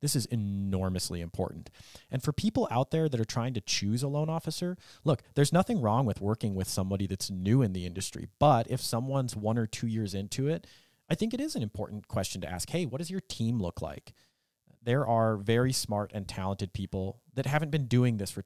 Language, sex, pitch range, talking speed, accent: English, male, 95-125 Hz, 220 wpm, American